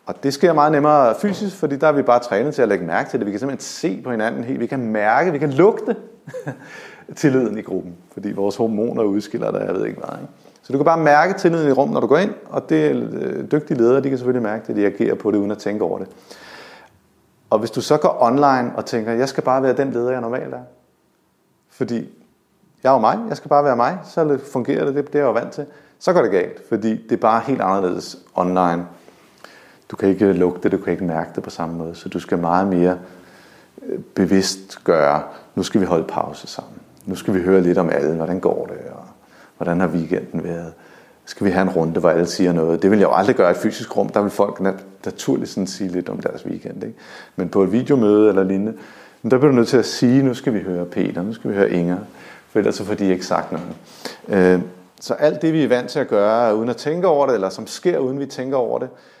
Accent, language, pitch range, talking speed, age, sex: native, Danish, 90-140 Hz, 245 wpm, 30-49, male